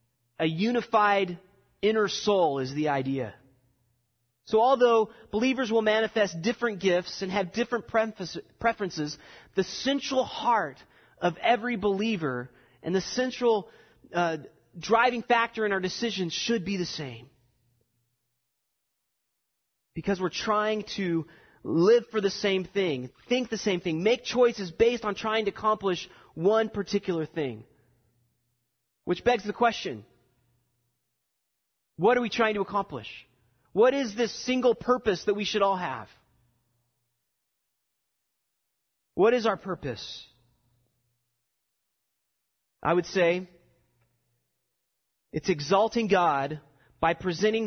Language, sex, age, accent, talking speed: English, male, 30-49, American, 115 wpm